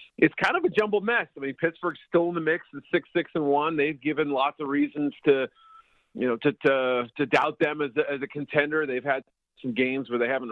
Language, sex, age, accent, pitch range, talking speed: English, male, 40-59, American, 130-170 Hz, 245 wpm